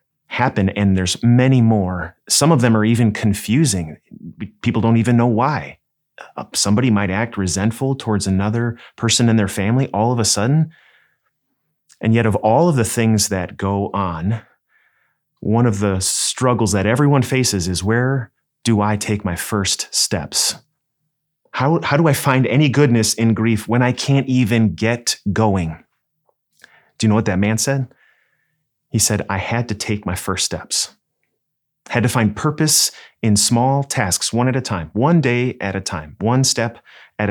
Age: 30-49